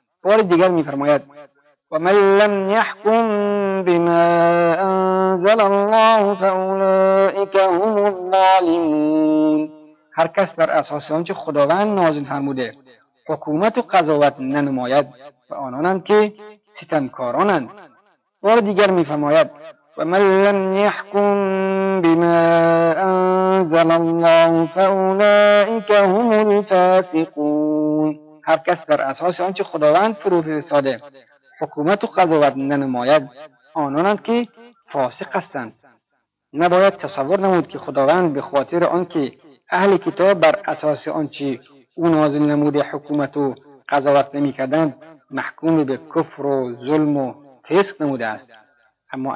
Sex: male